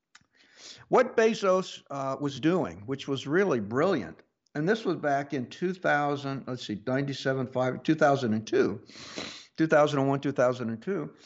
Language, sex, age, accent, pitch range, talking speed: English, male, 60-79, American, 130-170 Hz, 110 wpm